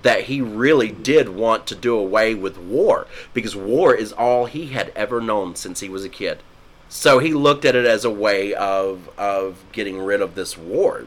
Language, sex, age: English, male, 30-49